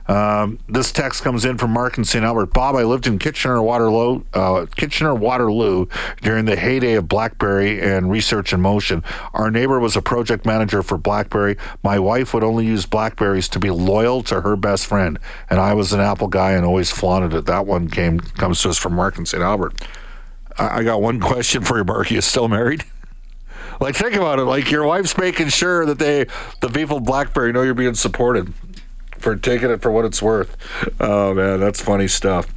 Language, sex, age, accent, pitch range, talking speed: English, male, 50-69, American, 100-125 Hz, 205 wpm